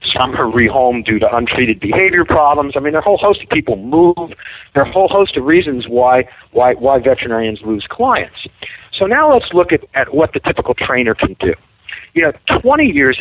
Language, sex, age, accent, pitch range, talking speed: English, male, 50-69, American, 115-165 Hz, 215 wpm